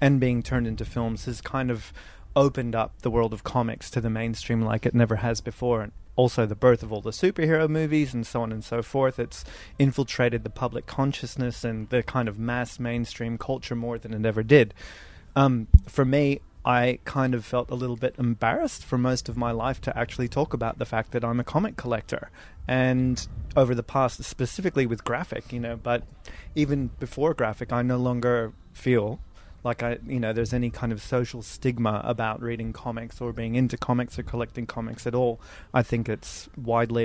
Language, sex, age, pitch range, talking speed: English, male, 20-39, 115-125 Hz, 200 wpm